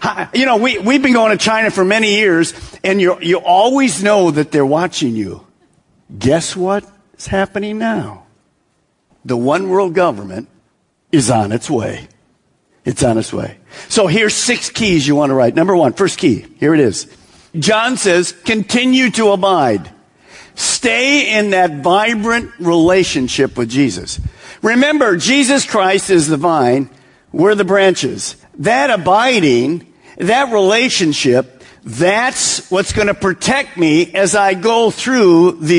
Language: English